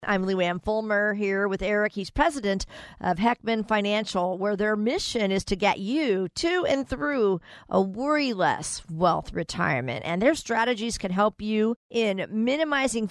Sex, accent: female, American